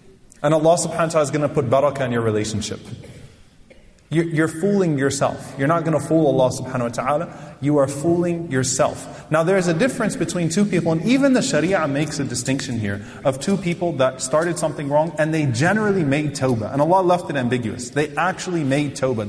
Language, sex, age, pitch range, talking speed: English, male, 20-39, 130-170 Hz, 200 wpm